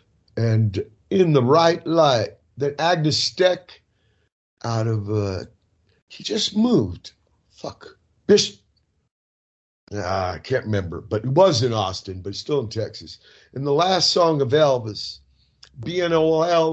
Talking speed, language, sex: 125 wpm, English, male